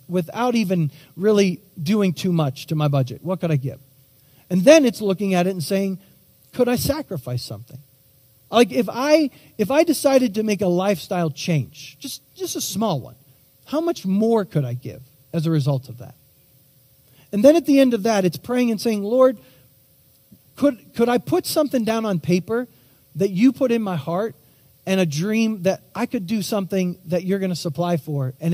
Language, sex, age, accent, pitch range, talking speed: English, male, 40-59, American, 135-210 Hz, 195 wpm